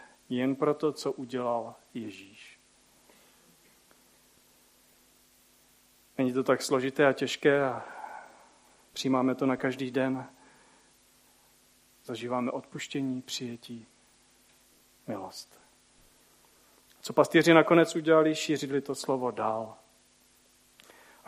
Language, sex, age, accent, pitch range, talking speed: Czech, male, 40-59, native, 125-155 Hz, 85 wpm